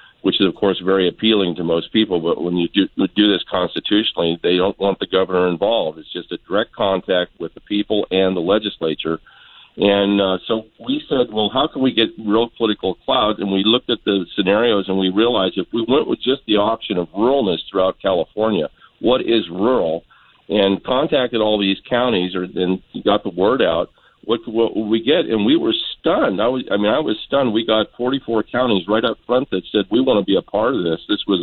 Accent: American